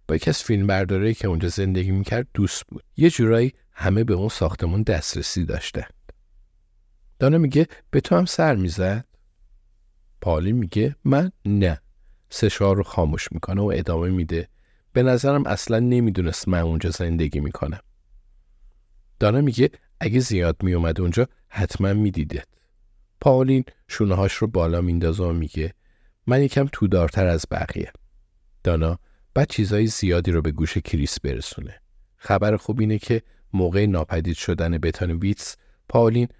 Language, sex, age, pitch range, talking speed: Persian, male, 50-69, 85-105 Hz, 135 wpm